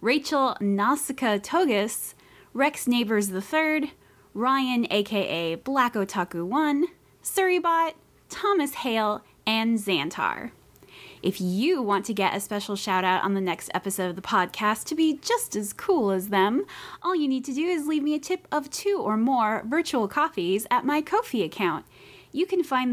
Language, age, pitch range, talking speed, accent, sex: English, 20-39, 200-315 Hz, 170 wpm, American, female